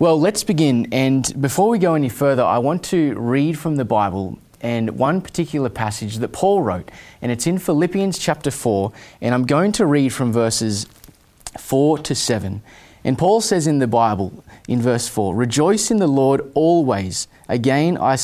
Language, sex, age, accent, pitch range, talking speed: English, male, 20-39, Australian, 115-155 Hz, 180 wpm